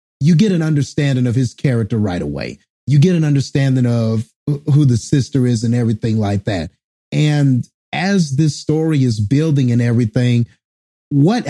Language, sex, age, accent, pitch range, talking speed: English, male, 30-49, American, 115-150 Hz, 160 wpm